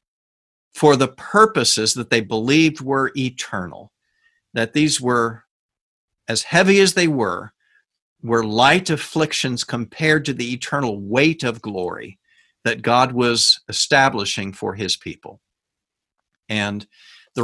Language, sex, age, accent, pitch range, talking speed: English, male, 50-69, American, 125-170 Hz, 120 wpm